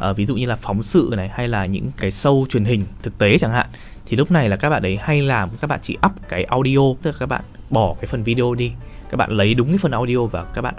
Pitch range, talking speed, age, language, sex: 105-145 Hz, 295 wpm, 20-39, Vietnamese, male